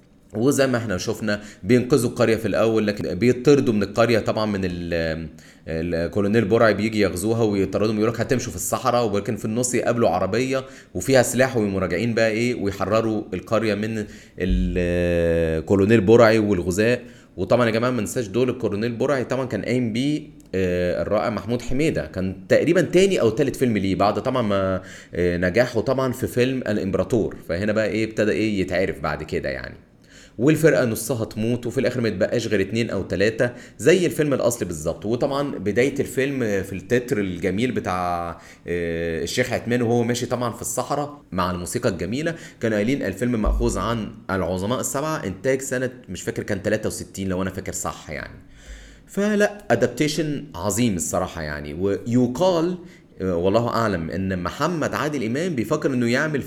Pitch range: 95-125 Hz